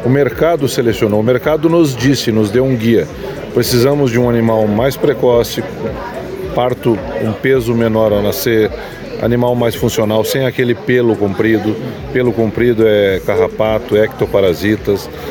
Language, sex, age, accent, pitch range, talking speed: Portuguese, male, 40-59, Brazilian, 105-125 Hz, 135 wpm